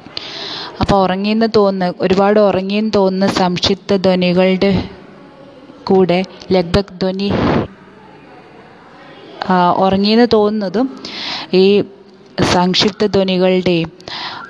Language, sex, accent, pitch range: Hindi, female, native, 180-205 Hz